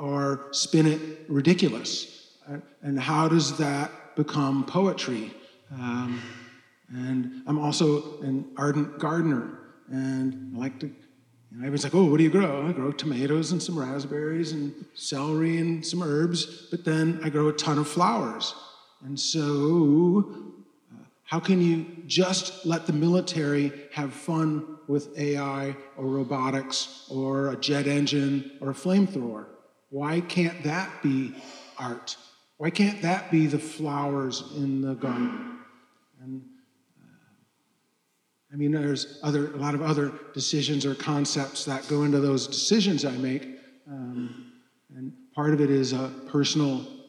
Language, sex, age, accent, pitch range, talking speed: English, male, 40-59, American, 135-160 Hz, 145 wpm